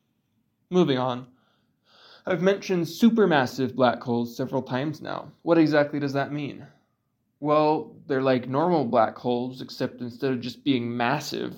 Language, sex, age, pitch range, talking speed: English, male, 20-39, 125-155 Hz, 140 wpm